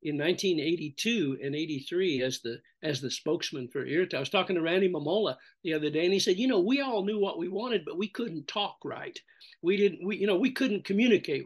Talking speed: 230 wpm